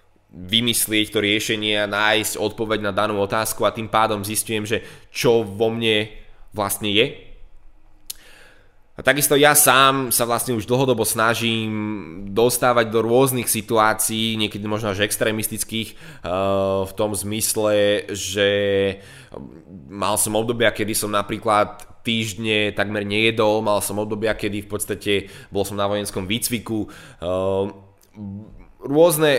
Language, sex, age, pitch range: Slovak, male, 20-39, 105-120 Hz